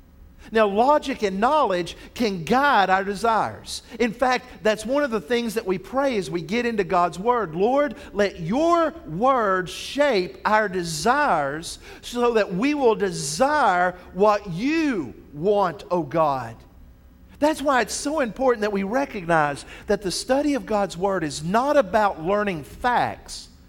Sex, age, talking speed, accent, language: male, 50-69, 150 wpm, American, English